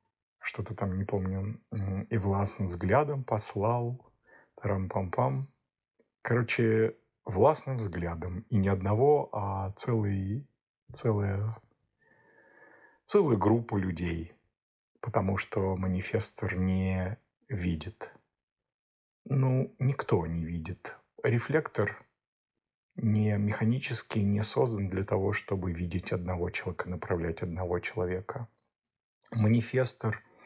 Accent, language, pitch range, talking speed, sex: native, Russian, 95-115 Hz, 85 wpm, male